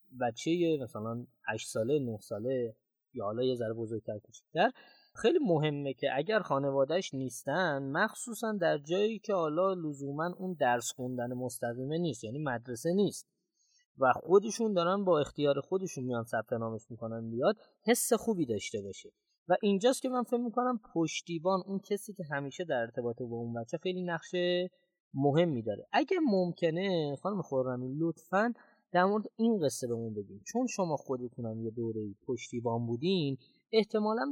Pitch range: 125-195 Hz